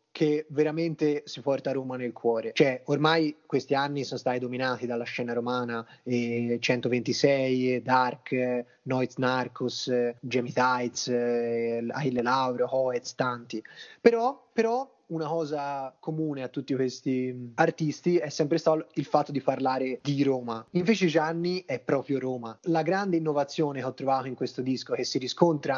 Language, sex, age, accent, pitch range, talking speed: Italian, male, 20-39, native, 125-155 Hz, 155 wpm